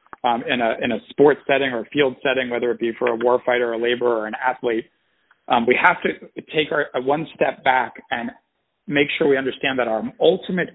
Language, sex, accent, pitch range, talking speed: English, male, American, 120-145 Hz, 230 wpm